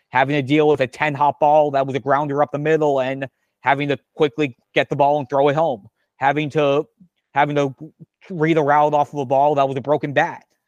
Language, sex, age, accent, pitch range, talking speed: English, male, 30-49, American, 135-155 Hz, 230 wpm